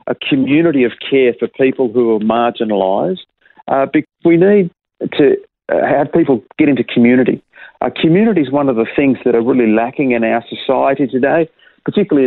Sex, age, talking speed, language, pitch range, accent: male, 40-59, 155 wpm, English, 120-160 Hz, Australian